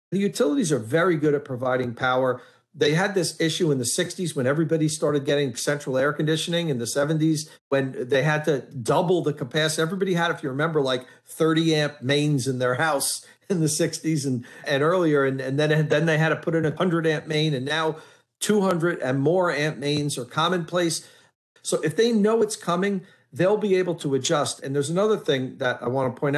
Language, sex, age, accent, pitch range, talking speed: English, male, 50-69, American, 135-170 Hz, 210 wpm